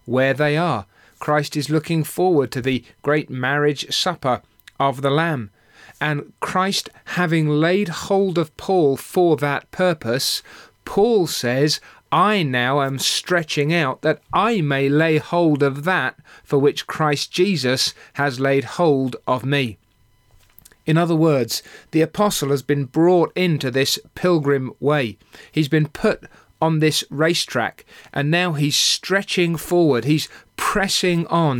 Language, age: English, 40-59